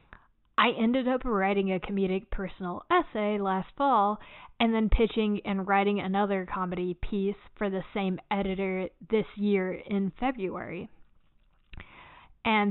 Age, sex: 20-39, female